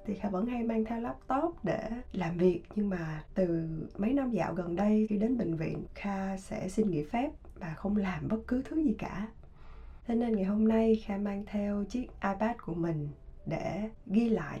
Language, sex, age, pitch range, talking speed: Vietnamese, female, 20-39, 165-220 Hz, 205 wpm